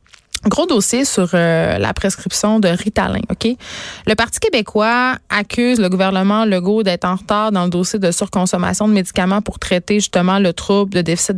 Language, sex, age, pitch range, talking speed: French, female, 20-39, 175-210 Hz, 175 wpm